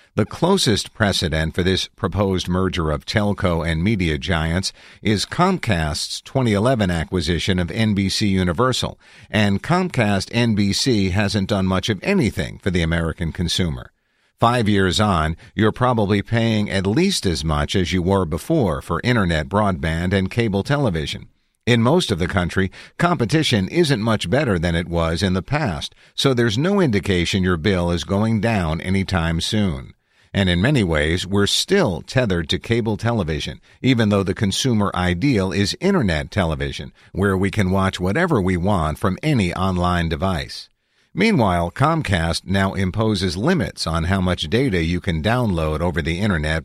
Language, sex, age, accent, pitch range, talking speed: English, male, 50-69, American, 90-110 Hz, 155 wpm